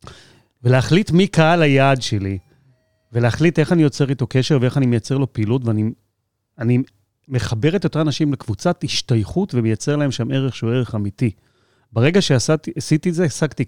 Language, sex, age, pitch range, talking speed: Hebrew, male, 30-49, 110-145 Hz, 155 wpm